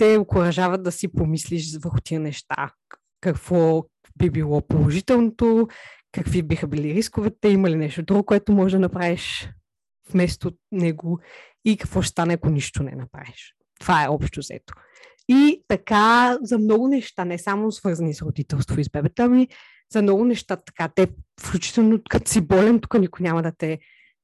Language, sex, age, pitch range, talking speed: Bulgarian, female, 20-39, 155-205 Hz, 165 wpm